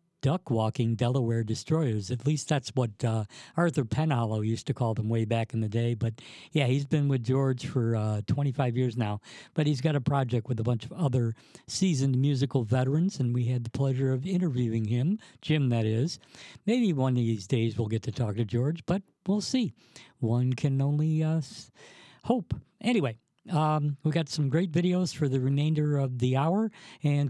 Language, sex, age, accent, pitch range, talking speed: English, male, 50-69, American, 120-155 Hz, 190 wpm